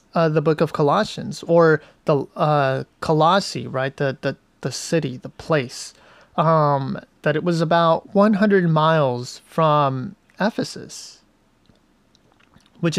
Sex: male